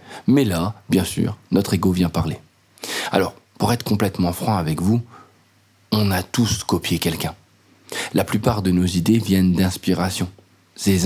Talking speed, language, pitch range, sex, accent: 150 wpm, French, 90-115 Hz, male, French